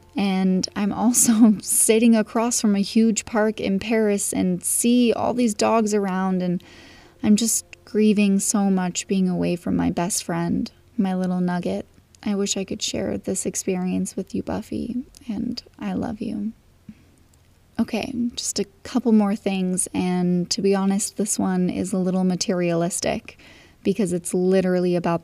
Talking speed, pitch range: 155 wpm, 185-215 Hz